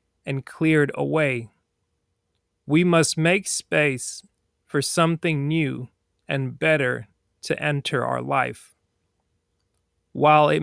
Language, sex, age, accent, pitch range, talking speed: English, male, 30-49, American, 95-150 Hz, 100 wpm